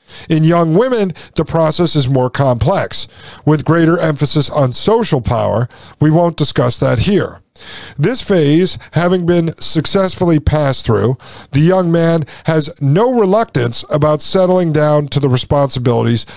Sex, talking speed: male, 140 wpm